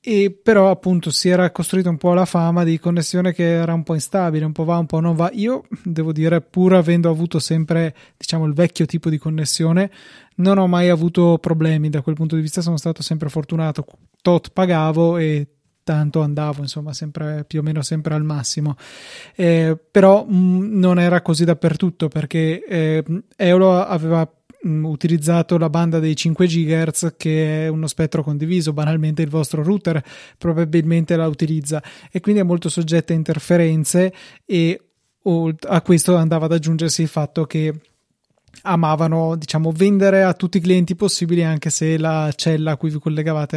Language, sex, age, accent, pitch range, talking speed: Italian, male, 20-39, native, 155-175 Hz, 175 wpm